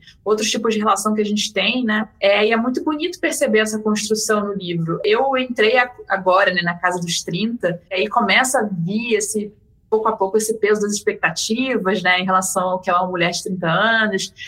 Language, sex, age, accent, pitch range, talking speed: Portuguese, female, 20-39, Brazilian, 200-255 Hz, 220 wpm